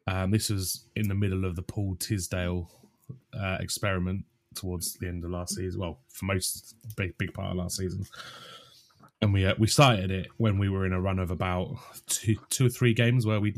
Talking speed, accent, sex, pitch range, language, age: 210 wpm, British, male, 95-115 Hz, English, 20-39